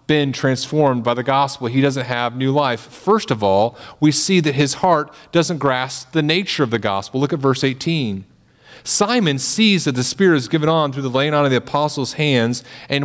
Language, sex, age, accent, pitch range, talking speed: English, male, 40-59, American, 120-150 Hz, 210 wpm